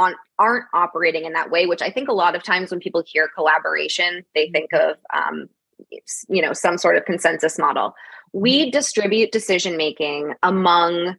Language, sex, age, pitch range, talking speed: English, female, 20-39, 165-220 Hz, 165 wpm